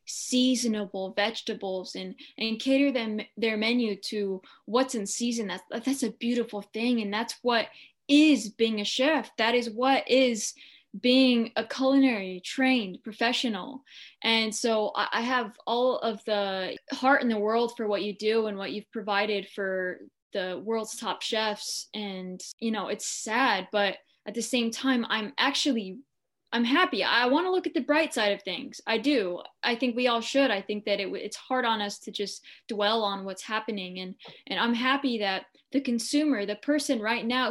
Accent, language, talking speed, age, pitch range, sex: American, English, 180 wpm, 10-29, 205-255 Hz, female